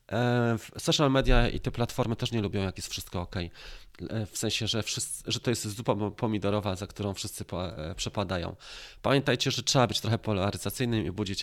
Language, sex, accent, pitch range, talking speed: Polish, male, native, 105-140 Hz, 180 wpm